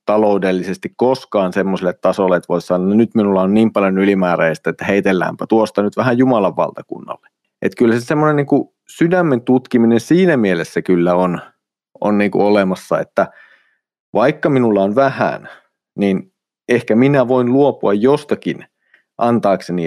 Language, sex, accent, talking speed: Finnish, male, native, 135 wpm